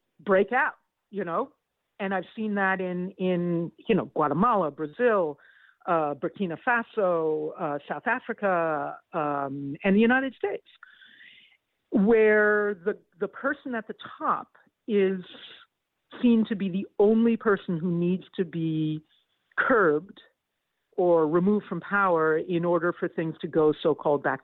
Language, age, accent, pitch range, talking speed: English, 50-69, American, 160-215 Hz, 135 wpm